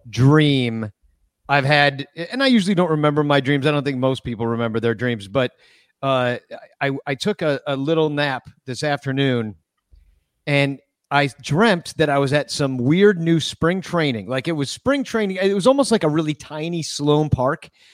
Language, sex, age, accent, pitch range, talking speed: English, male, 40-59, American, 140-185 Hz, 185 wpm